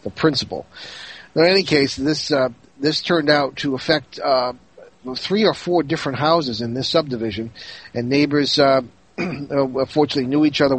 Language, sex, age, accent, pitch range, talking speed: English, male, 50-69, American, 120-145 Hz, 155 wpm